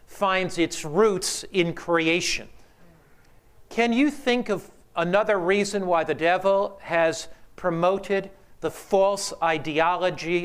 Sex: male